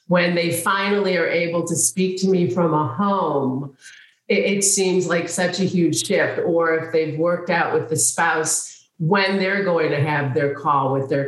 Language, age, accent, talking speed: English, 50-69, American, 195 wpm